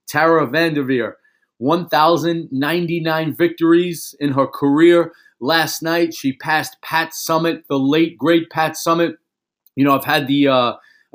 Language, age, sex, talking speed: English, 40-59, male, 130 wpm